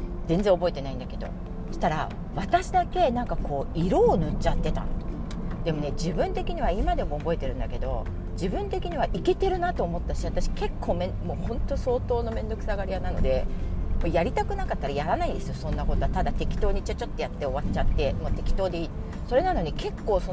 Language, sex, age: Japanese, female, 40-59